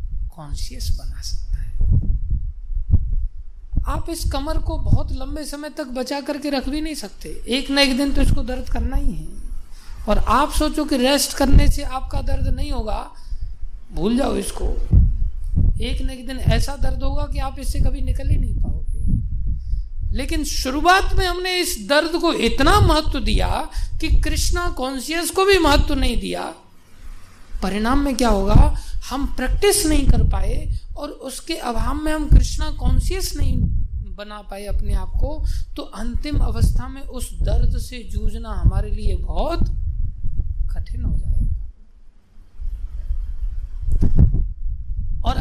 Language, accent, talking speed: Hindi, native, 150 wpm